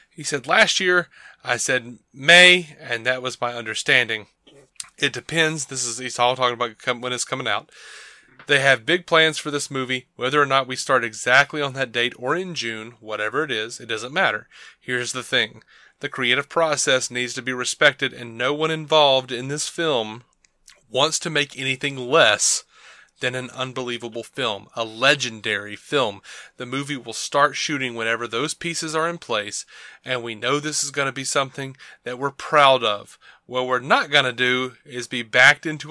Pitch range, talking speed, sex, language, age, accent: 120-150 Hz, 185 wpm, male, English, 30-49, American